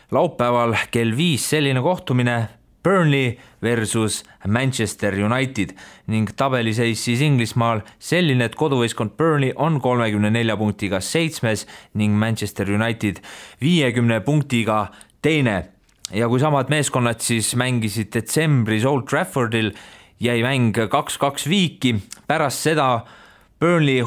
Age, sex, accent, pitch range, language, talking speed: 30-49, male, Finnish, 110-140 Hz, English, 105 wpm